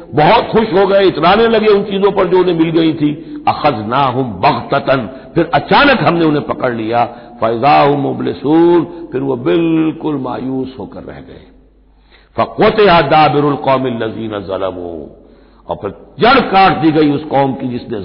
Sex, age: male, 60-79